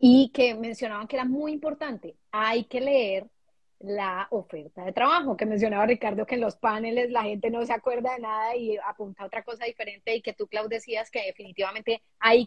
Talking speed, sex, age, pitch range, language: 200 wpm, female, 30-49, 210-260 Hz, Spanish